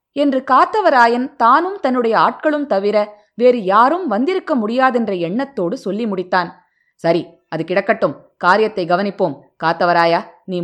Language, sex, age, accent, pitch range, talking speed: Tamil, female, 20-39, native, 170-240 Hz, 115 wpm